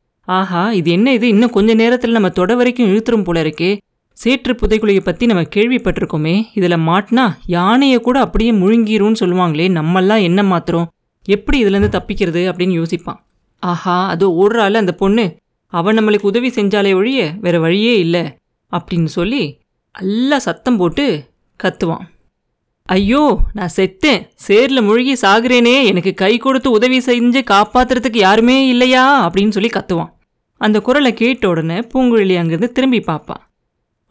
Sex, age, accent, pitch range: female, 30-49, native, 185-240 Hz